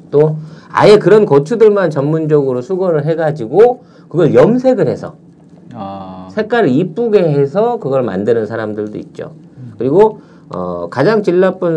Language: Korean